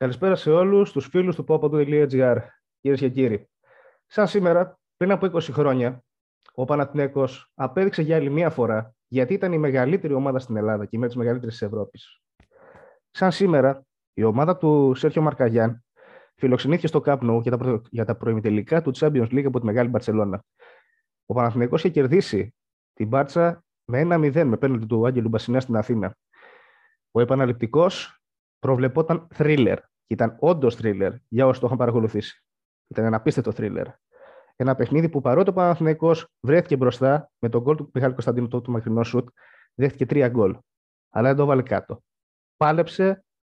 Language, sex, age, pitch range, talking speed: Greek, male, 30-49, 120-170 Hz, 160 wpm